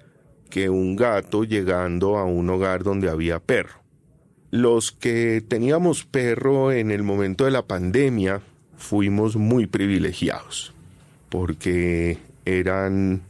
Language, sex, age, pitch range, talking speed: Spanish, male, 40-59, 95-130 Hz, 115 wpm